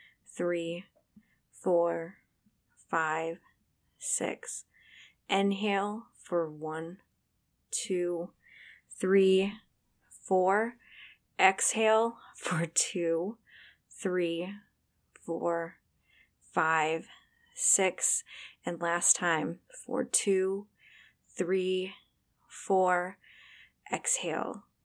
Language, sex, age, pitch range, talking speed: English, female, 30-49, 170-210 Hz, 60 wpm